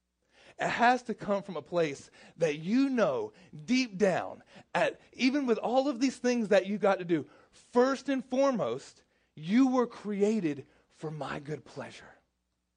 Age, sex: 30-49, male